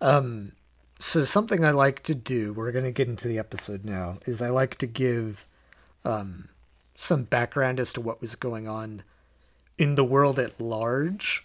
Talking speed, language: 180 wpm, English